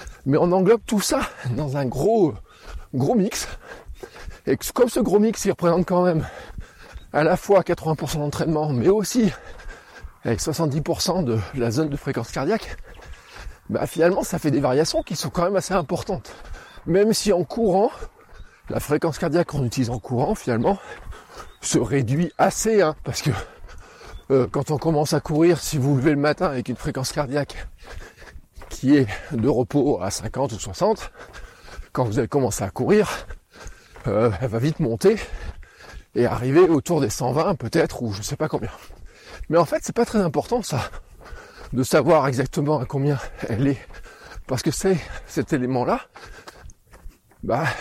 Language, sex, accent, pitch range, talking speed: French, male, French, 130-180 Hz, 165 wpm